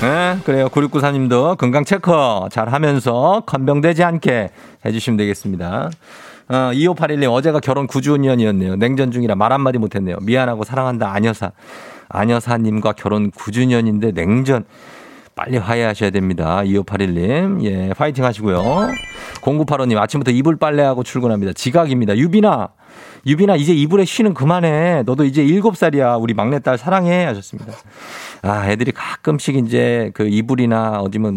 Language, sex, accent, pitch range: Korean, male, native, 110-145 Hz